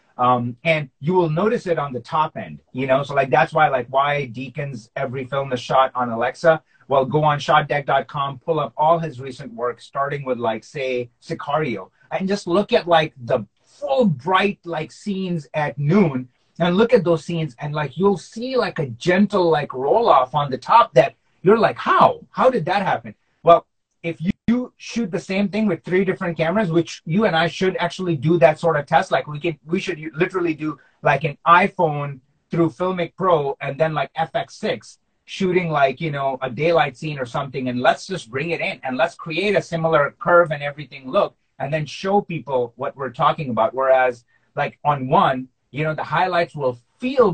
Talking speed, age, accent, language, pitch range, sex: 200 wpm, 30-49, American, English, 135-175 Hz, male